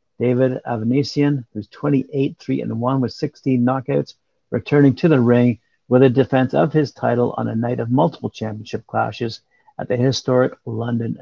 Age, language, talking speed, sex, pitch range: 50-69, English, 150 wpm, male, 115-140 Hz